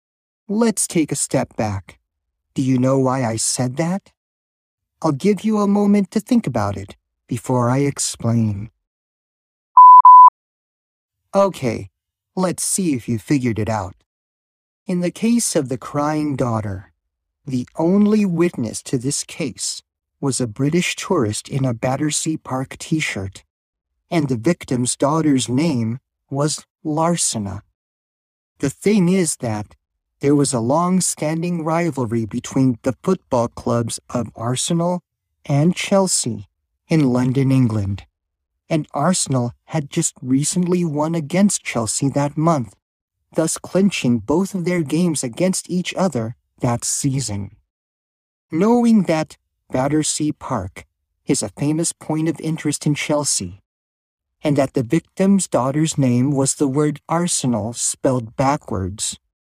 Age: 50-69